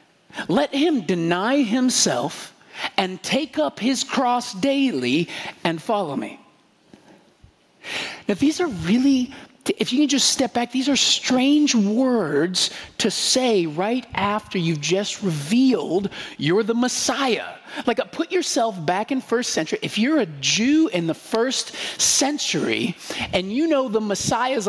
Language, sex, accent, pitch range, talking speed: Ukrainian, male, American, 200-275 Hz, 140 wpm